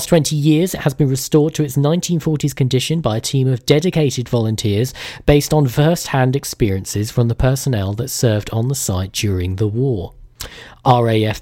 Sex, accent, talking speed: male, British, 170 wpm